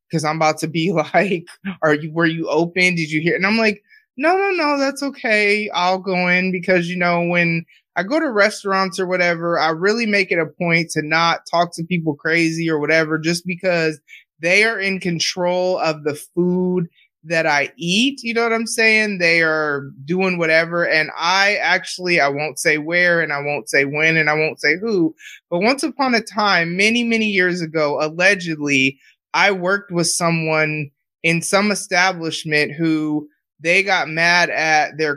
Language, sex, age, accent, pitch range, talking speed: English, male, 20-39, American, 160-195 Hz, 190 wpm